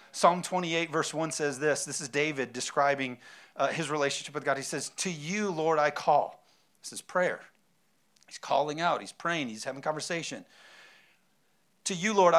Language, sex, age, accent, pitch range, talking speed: English, male, 40-59, American, 150-190 Hz, 175 wpm